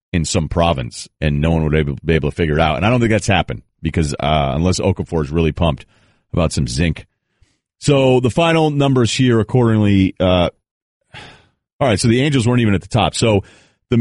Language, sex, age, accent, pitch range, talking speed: English, male, 40-59, American, 85-115 Hz, 205 wpm